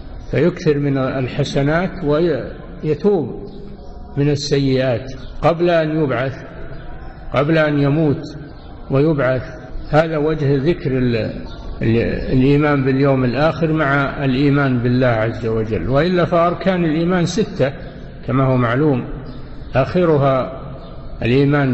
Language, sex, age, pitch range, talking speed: Arabic, male, 60-79, 130-155 Hz, 90 wpm